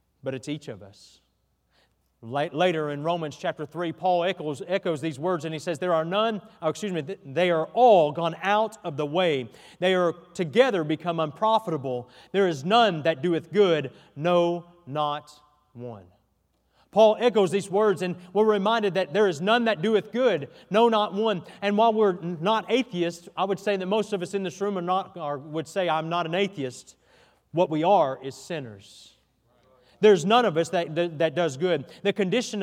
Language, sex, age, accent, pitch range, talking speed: English, male, 40-59, American, 155-200 Hz, 190 wpm